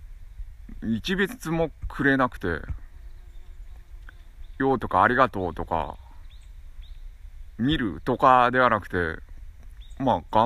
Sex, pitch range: male, 75-105 Hz